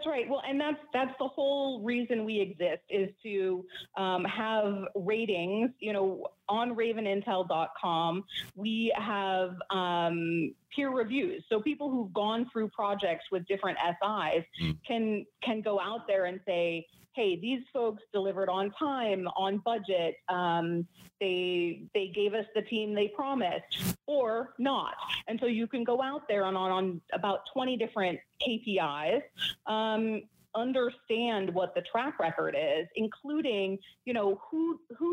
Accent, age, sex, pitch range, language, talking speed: American, 30-49, female, 185-235 Hz, English, 145 wpm